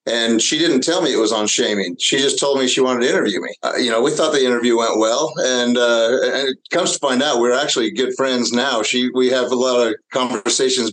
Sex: male